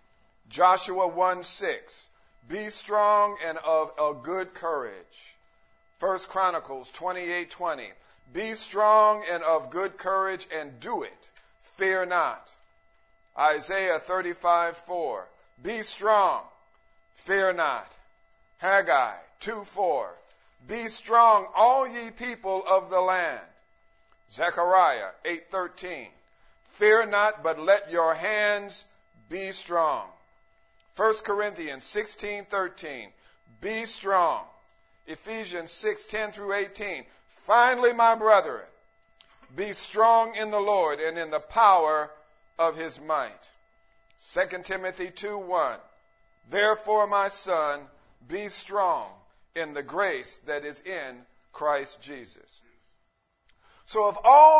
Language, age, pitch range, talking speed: English, 50-69, 170-215 Hz, 105 wpm